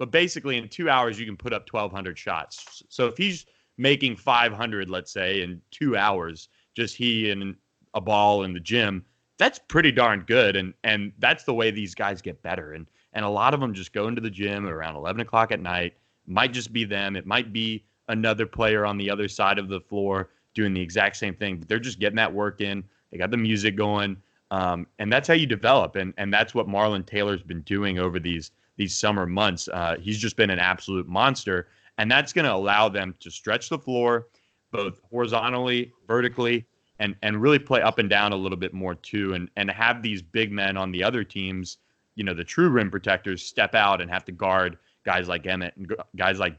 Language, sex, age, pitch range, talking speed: English, male, 20-39, 95-110 Hz, 220 wpm